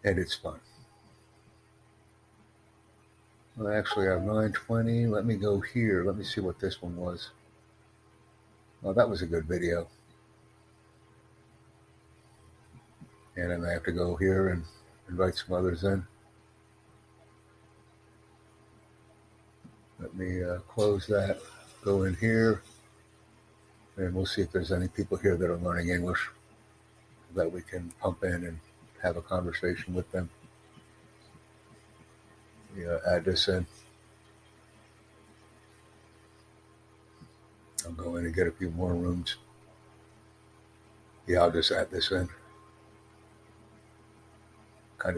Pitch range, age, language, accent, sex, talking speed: 95-110 Hz, 60-79, English, American, male, 115 wpm